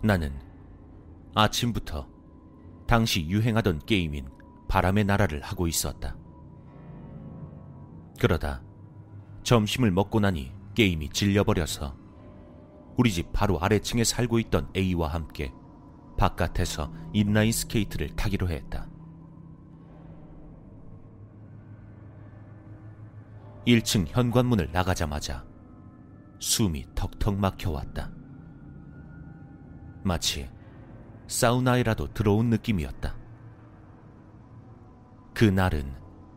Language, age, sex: Korean, 30-49, male